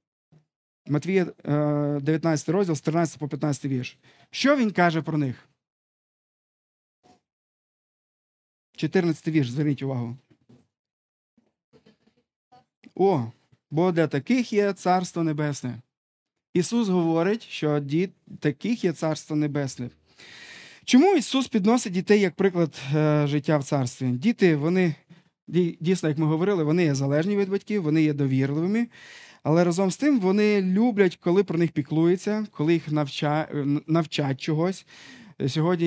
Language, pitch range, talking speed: Ukrainian, 145-180 Hz, 115 wpm